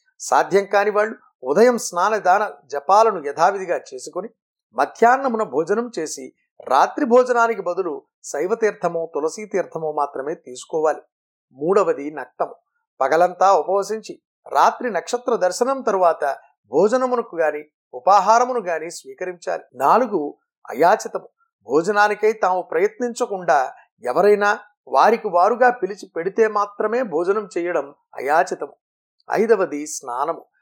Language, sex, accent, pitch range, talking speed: Telugu, male, native, 180-250 Hz, 100 wpm